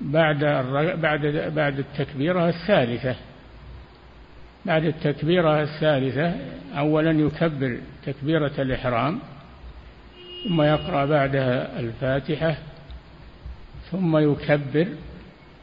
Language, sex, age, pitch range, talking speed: Arabic, male, 60-79, 130-160 Hz, 60 wpm